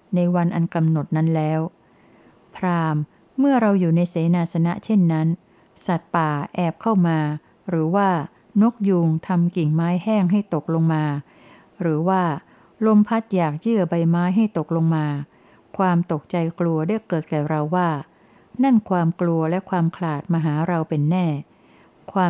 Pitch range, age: 160-185 Hz, 60-79